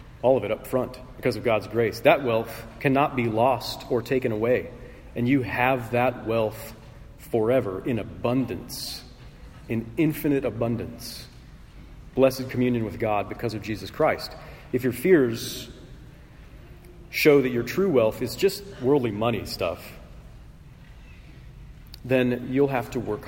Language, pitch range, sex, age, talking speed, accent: English, 115-145 Hz, male, 40-59, 140 wpm, American